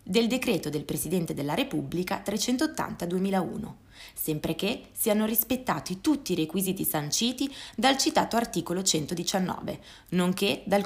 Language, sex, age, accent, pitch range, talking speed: Italian, female, 20-39, native, 160-230 Hz, 115 wpm